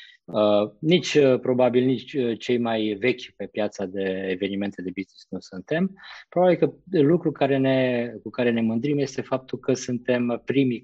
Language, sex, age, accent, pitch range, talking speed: Romanian, male, 20-39, native, 105-130 Hz, 160 wpm